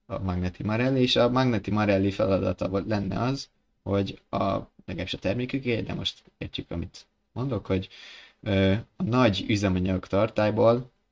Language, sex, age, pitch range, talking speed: Hungarian, male, 20-39, 95-110 Hz, 125 wpm